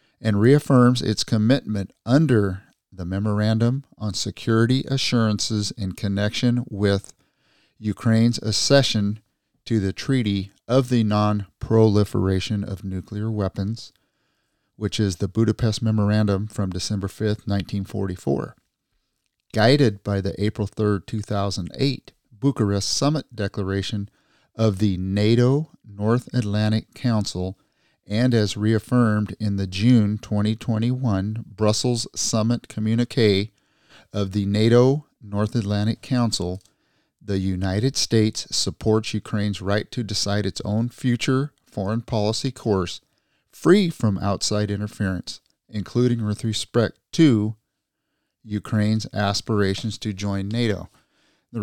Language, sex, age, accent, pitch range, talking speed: English, male, 40-59, American, 100-120 Hz, 105 wpm